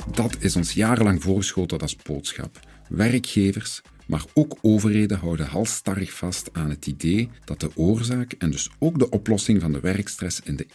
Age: 50-69